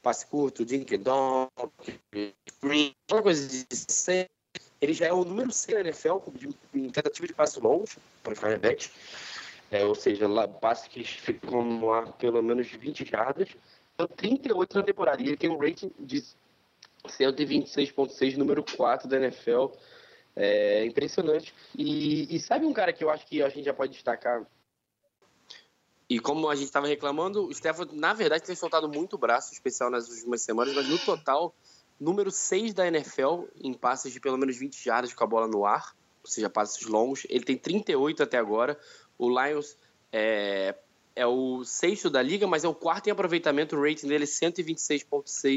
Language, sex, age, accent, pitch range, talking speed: Portuguese, male, 20-39, Brazilian, 130-180 Hz, 170 wpm